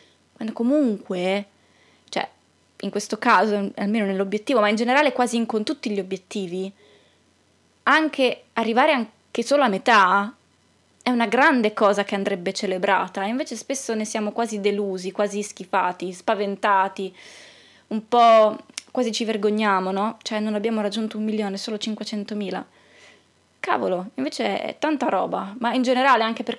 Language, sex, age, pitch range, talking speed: Italian, female, 20-39, 200-255 Hz, 140 wpm